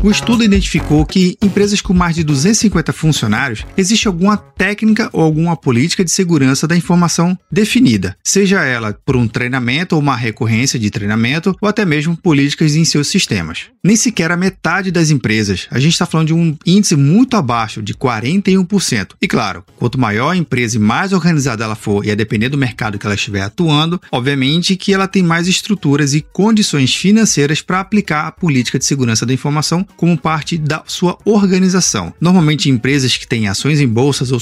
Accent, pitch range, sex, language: Brazilian, 135-185 Hz, male, Portuguese